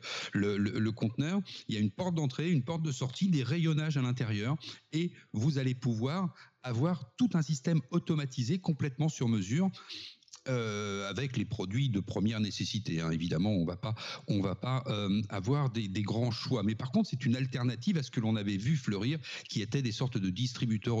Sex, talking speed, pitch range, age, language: male, 205 wpm, 110-145 Hz, 50-69, French